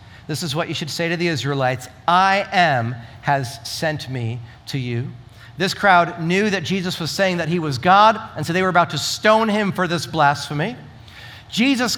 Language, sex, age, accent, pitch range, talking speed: English, male, 40-59, American, 145-195 Hz, 195 wpm